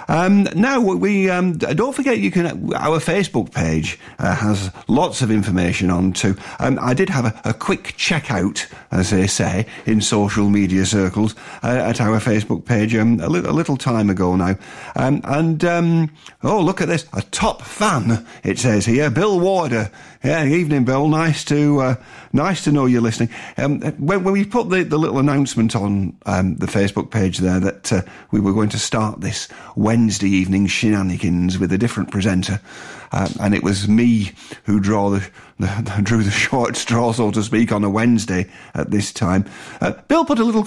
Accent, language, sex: British, English, male